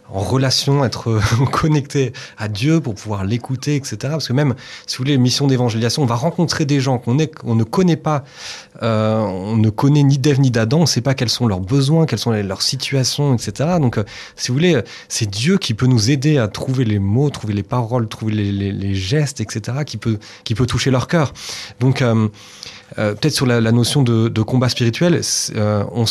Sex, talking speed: male, 220 wpm